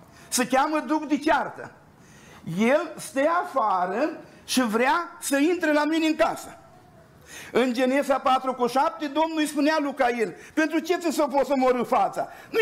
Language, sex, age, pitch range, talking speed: Romanian, male, 50-69, 250-320 Hz, 150 wpm